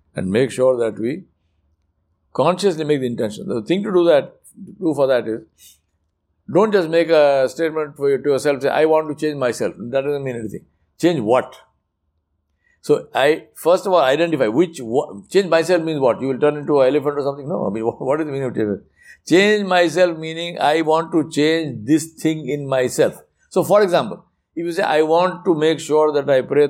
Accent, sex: Indian, male